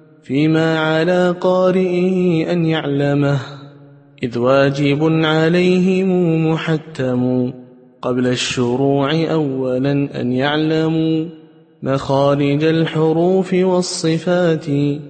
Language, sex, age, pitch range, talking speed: Arabic, male, 20-39, 135-175 Hz, 70 wpm